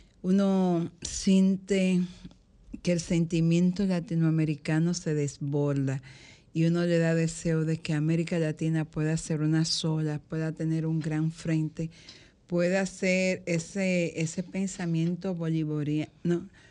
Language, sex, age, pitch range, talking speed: Spanish, female, 50-69, 155-175 Hz, 115 wpm